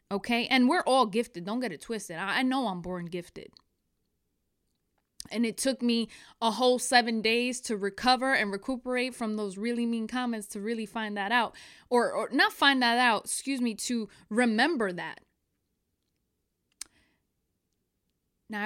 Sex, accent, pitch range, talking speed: female, American, 190-245 Hz, 155 wpm